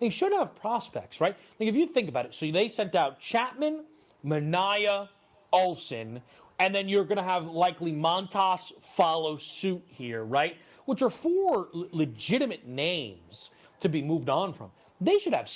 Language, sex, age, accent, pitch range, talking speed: English, male, 30-49, American, 150-230 Hz, 165 wpm